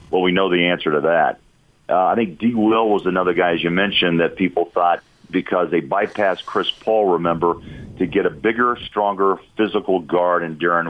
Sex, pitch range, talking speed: male, 80-95 Hz, 200 wpm